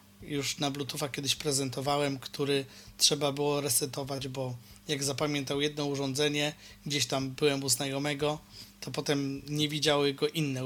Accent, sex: native, male